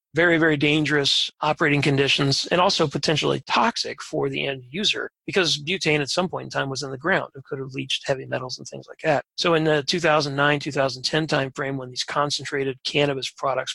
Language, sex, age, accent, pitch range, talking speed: English, male, 40-59, American, 135-160 Hz, 190 wpm